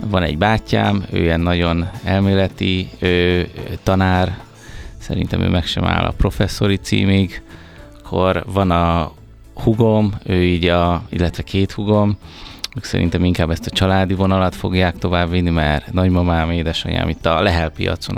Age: 30-49